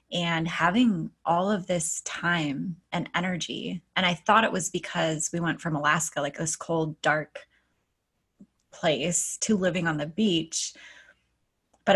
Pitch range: 165-200 Hz